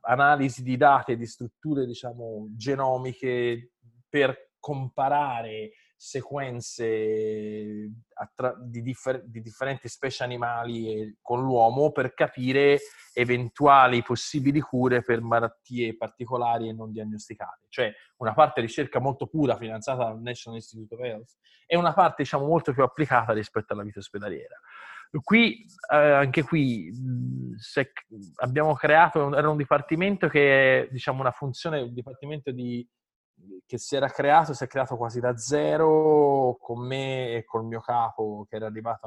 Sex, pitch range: male, 115-150 Hz